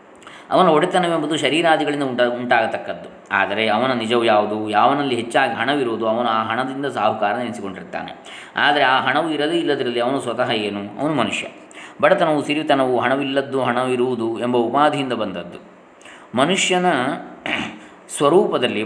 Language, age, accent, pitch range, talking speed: Kannada, 20-39, native, 115-145 Hz, 115 wpm